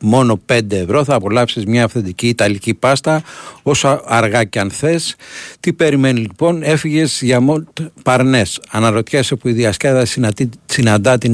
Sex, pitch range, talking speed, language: male, 110-135 Hz, 150 wpm, Greek